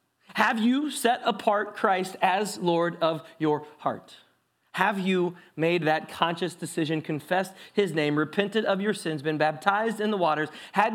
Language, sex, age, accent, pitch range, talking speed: English, male, 30-49, American, 135-220 Hz, 160 wpm